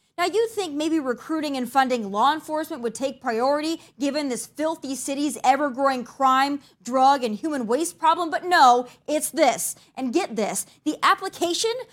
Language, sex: English, female